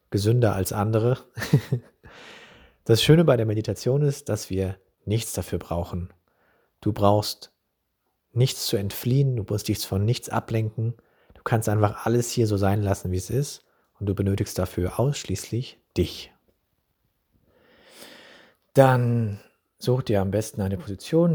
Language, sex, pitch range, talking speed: German, male, 90-110 Hz, 140 wpm